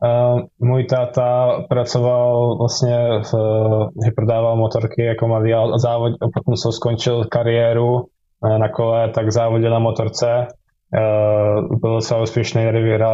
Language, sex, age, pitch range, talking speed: Slovak, male, 20-39, 115-125 Hz, 115 wpm